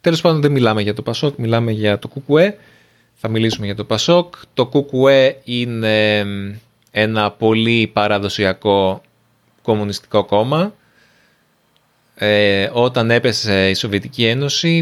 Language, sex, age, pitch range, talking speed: Greek, male, 20-39, 105-135 Hz, 120 wpm